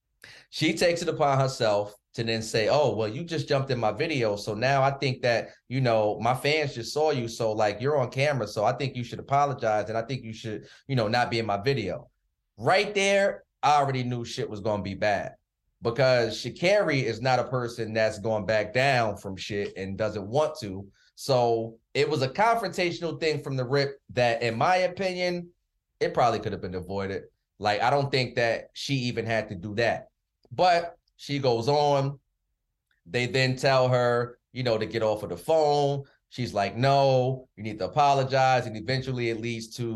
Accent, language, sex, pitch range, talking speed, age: American, English, male, 110-140 Hz, 205 wpm, 20-39